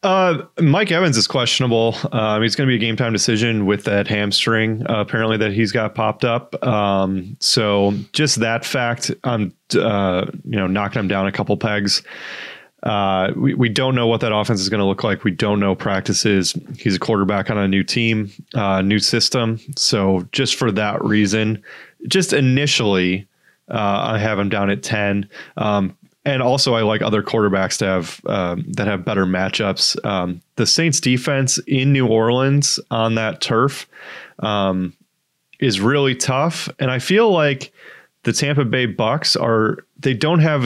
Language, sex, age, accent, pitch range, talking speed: English, male, 20-39, American, 105-135 Hz, 175 wpm